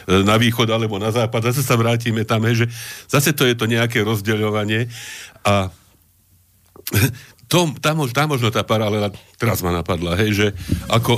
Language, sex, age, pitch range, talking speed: Slovak, male, 50-69, 95-115 Hz, 165 wpm